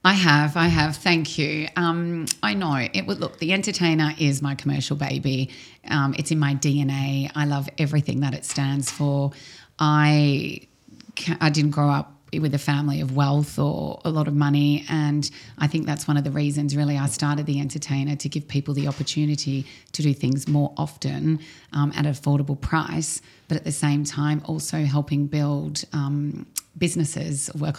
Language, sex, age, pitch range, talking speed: English, female, 30-49, 145-160 Hz, 180 wpm